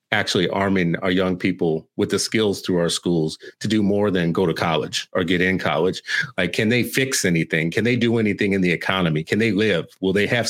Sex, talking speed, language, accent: male, 230 wpm, English, American